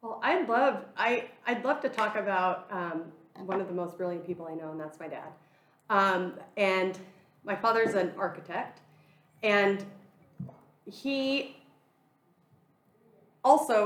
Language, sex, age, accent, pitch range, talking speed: English, female, 30-49, American, 170-210 Hz, 135 wpm